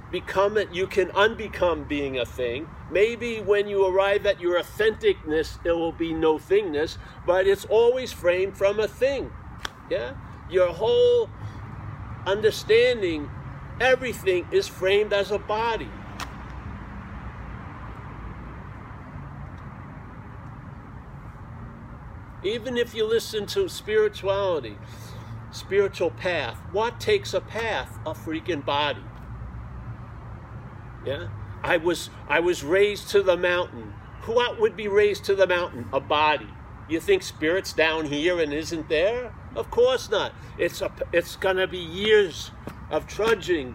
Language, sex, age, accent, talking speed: English, male, 50-69, American, 120 wpm